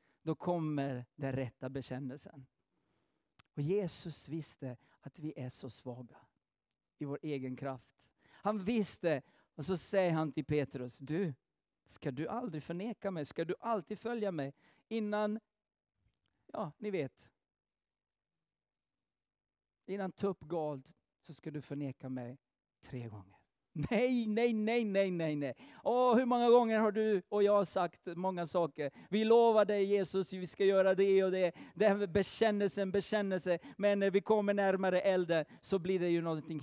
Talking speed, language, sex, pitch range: 150 wpm, English, male, 140-200 Hz